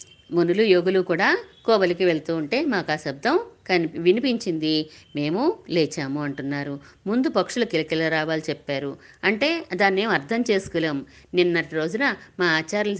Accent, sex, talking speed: native, female, 125 wpm